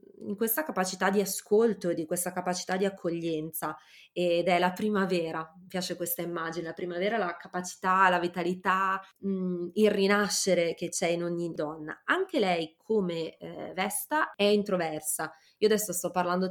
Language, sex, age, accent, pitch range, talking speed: Italian, female, 20-39, native, 175-205 Hz, 155 wpm